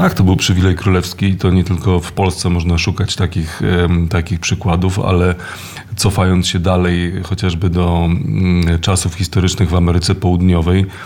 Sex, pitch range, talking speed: male, 90-100 Hz, 145 wpm